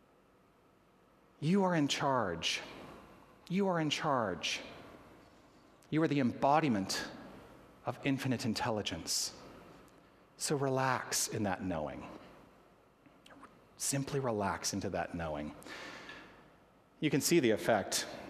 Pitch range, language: 100-140 Hz, English